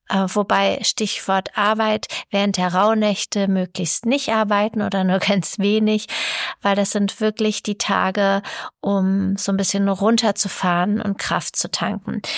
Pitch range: 205-235 Hz